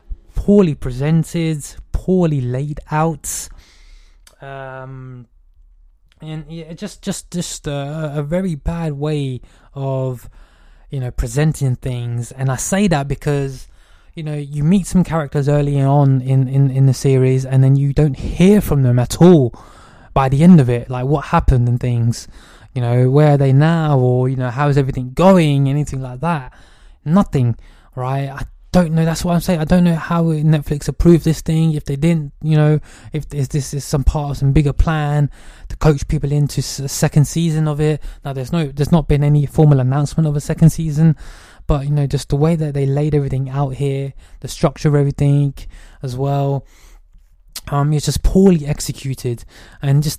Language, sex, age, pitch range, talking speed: English, male, 20-39, 130-155 Hz, 185 wpm